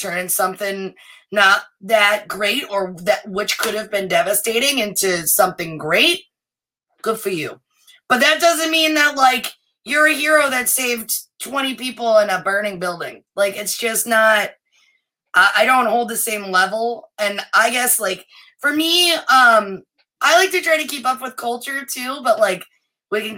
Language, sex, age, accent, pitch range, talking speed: English, female, 20-39, American, 195-255 Hz, 170 wpm